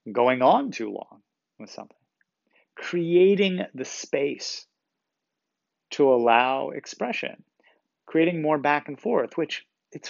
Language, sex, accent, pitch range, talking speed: English, male, American, 130-165 Hz, 115 wpm